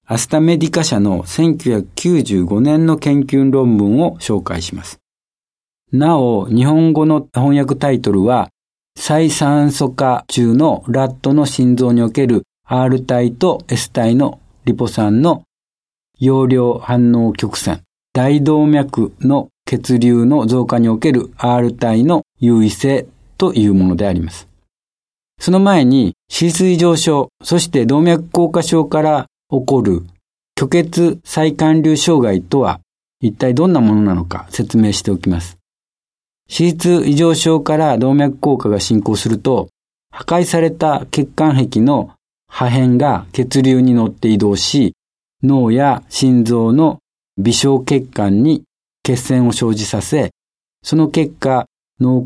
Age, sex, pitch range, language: 50-69, male, 110-150 Hz, Japanese